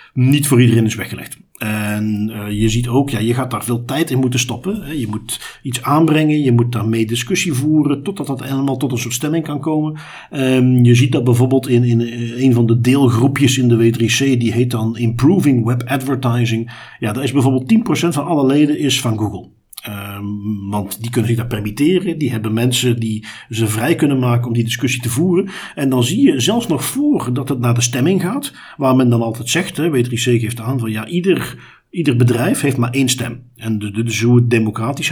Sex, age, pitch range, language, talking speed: male, 50-69, 115-145 Hz, Dutch, 215 wpm